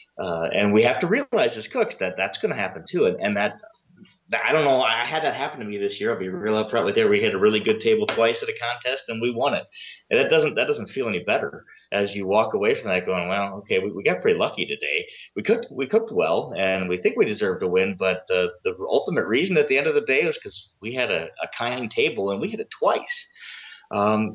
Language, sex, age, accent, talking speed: English, male, 30-49, American, 270 wpm